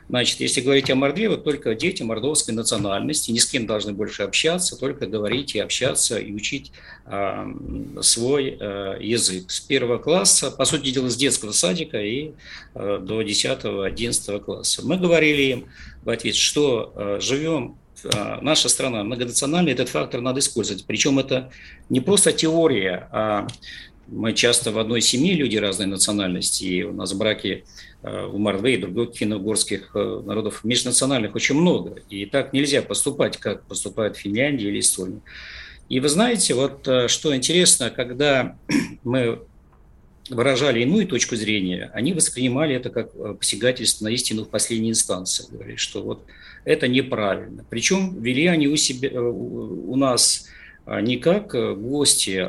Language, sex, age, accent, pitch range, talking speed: Russian, male, 50-69, native, 105-140 Hz, 145 wpm